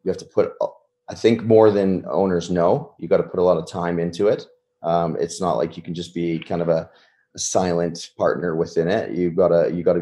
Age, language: 20-39, English